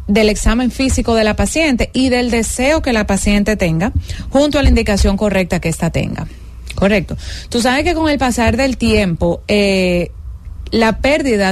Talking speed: 170 wpm